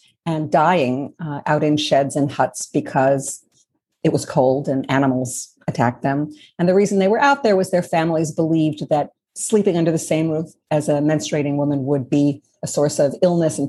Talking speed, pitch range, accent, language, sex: 195 wpm, 145-195 Hz, American, English, female